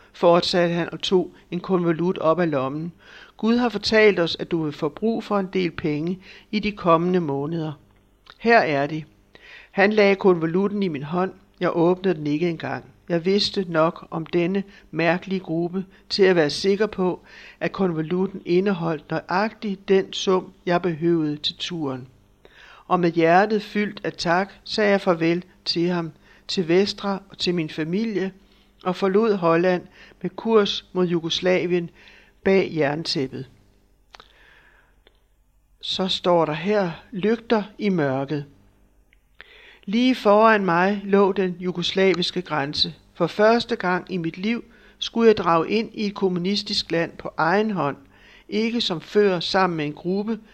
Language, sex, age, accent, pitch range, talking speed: Danish, male, 60-79, native, 160-200 Hz, 150 wpm